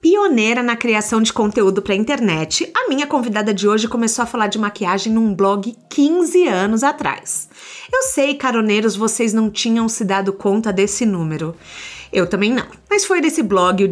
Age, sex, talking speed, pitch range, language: 30-49, female, 175 wpm, 210-280 Hz, Portuguese